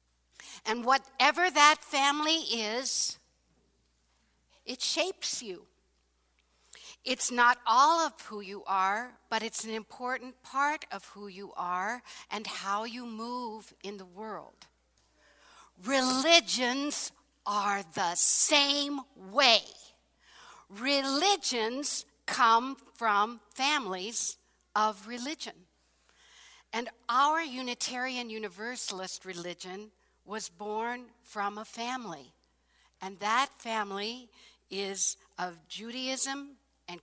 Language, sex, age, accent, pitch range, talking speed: English, female, 60-79, American, 200-265 Hz, 95 wpm